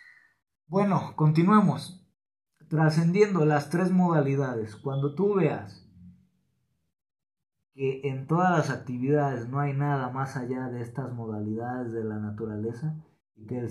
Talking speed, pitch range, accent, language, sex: 125 wpm, 115-155 Hz, Mexican, Spanish, male